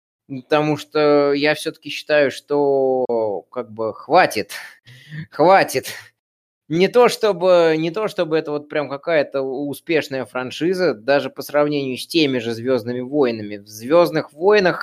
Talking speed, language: 135 wpm, Russian